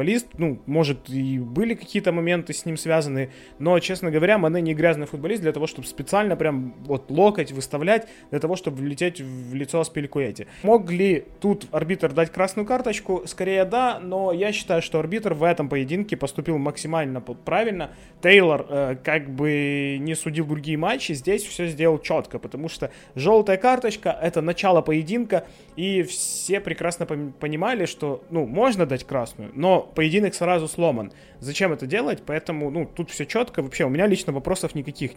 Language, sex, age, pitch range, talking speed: Ukrainian, male, 20-39, 145-185 Hz, 165 wpm